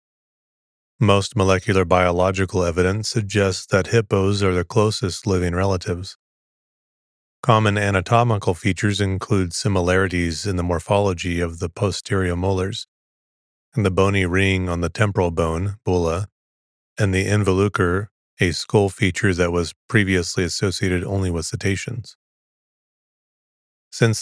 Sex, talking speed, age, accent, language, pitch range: male, 115 wpm, 30-49, American, English, 90-105 Hz